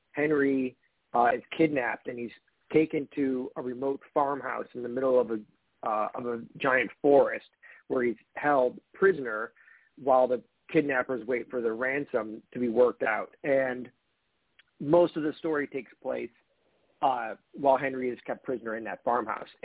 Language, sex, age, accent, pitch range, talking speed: English, male, 40-59, American, 125-155 Hz, 160 wpm